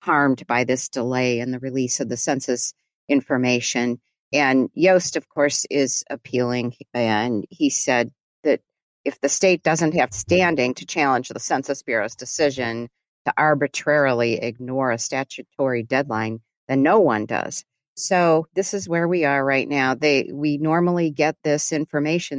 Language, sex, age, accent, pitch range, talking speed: English, female, 40-59, American, 130-155 Hz, 155 wpm